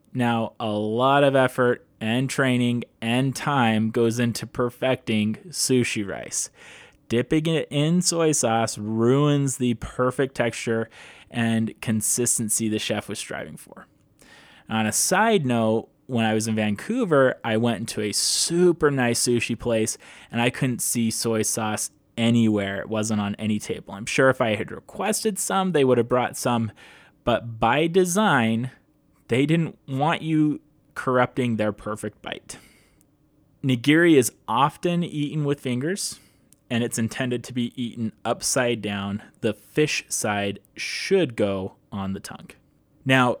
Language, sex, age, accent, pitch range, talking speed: English, male, 20-39, American, 115-150 Hz, 145 wpm